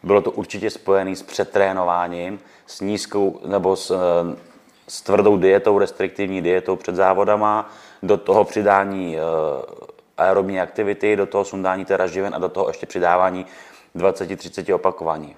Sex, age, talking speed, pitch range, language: male, 30-49, 130 wpm, 95-110 Hz, Czech